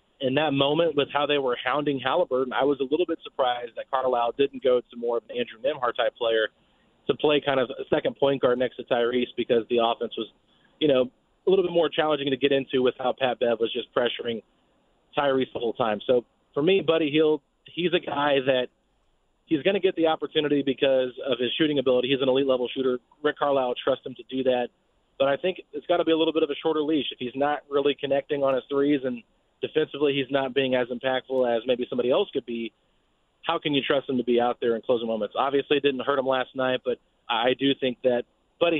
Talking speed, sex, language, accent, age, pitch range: 240 wpm, male, English, American, 30-49, 125-155 Hz